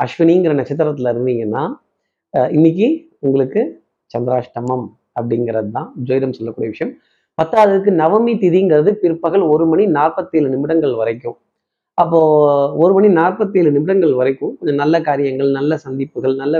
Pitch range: 140-180 Hz